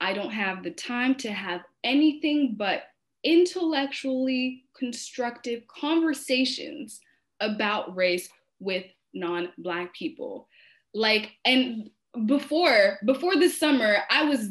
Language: French